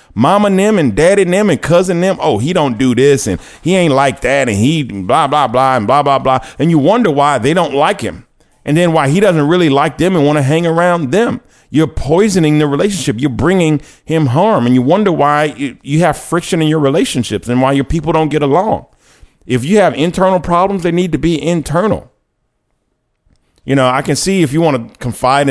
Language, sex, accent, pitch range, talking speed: English, male, American, 130-165 Hz, 225 wpm